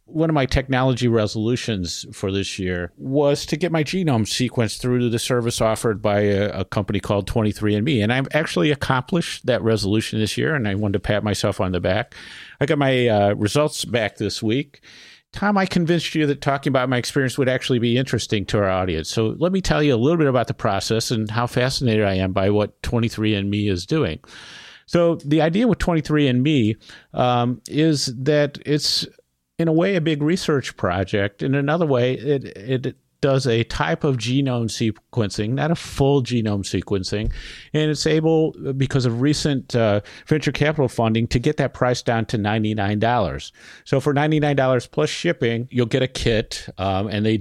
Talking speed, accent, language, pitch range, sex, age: 185 wpm, American, English, 105-145 Hz, male, 50-69